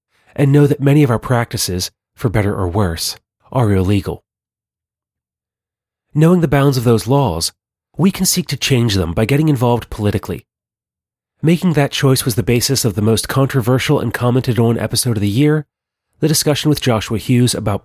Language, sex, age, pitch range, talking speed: English, male, 30-49, 110-140 Hz, 170 wpm